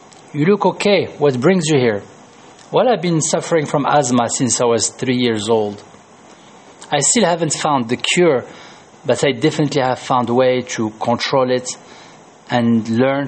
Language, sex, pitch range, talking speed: French, male, 120-160 Hz, 165 wpm